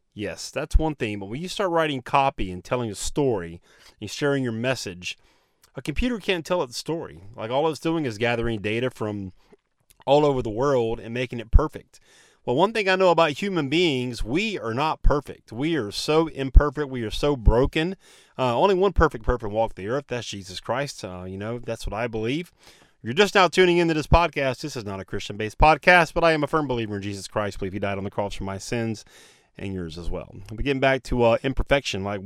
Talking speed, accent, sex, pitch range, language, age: 225 wpm, American, male, 105-145 Hz, English, 30-49